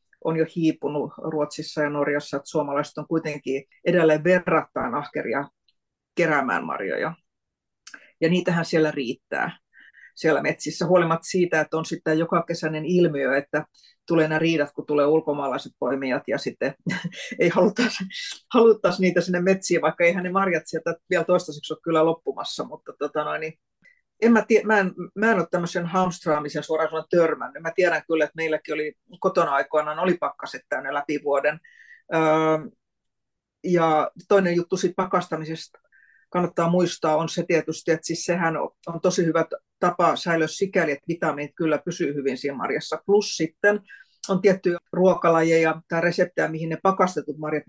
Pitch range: 155-180 Hz